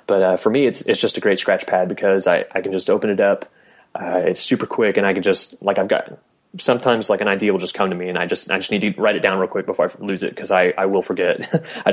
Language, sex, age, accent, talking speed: English, male, 20-39, American, 305 wpm